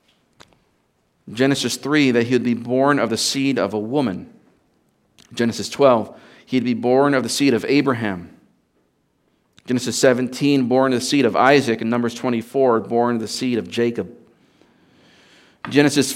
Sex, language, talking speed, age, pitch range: male, English, 155 wpm, 40-59, 115-135 Hz